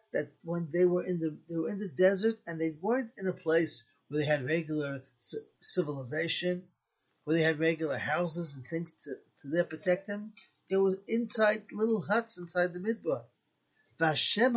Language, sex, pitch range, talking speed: English, male, 155-200 Hz, 180 wpm